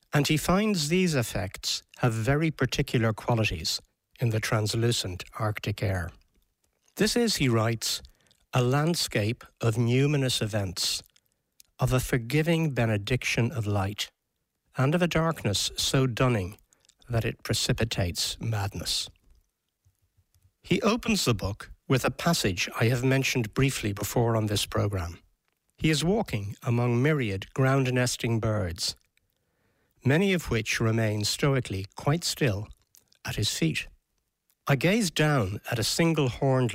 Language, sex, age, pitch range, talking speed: English, male, 60-79, 100-135 Hz, 125 wpm